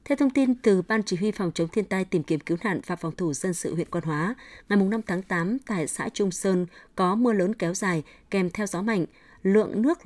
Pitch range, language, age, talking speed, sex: 180-225 Hz, Vietnamese, 20-39, 250 wpm, female